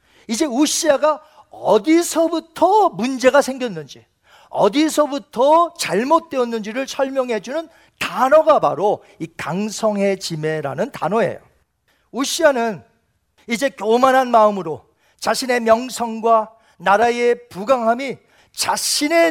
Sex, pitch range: male, 210-280 Hz